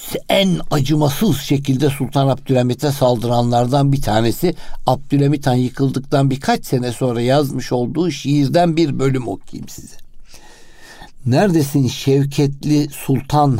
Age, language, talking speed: 60-79, Turkish, 105 wpm